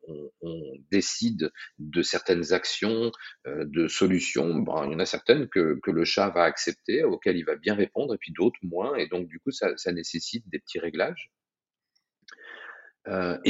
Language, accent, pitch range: French, French, 80-115 Hz